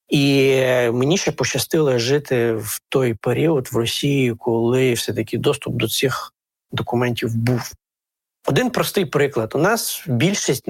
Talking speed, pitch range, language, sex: 130 wpm, 120-150 Hz, Ukrainian, male